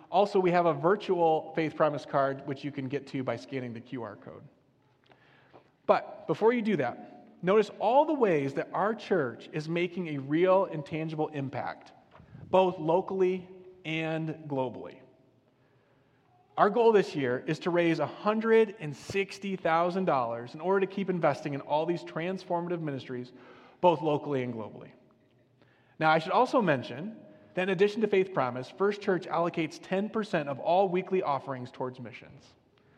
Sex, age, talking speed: male, 30-49, 155 wpm